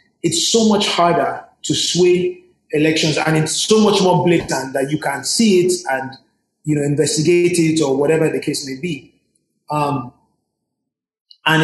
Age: 30-49